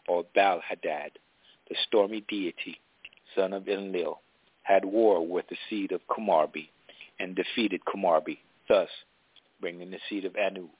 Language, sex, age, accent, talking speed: English, male, 50-69, American, 135 wpm